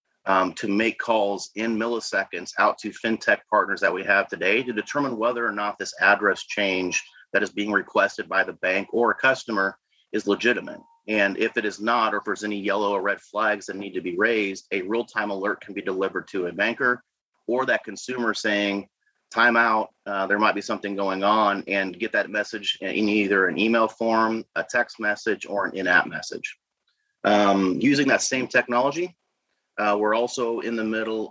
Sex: male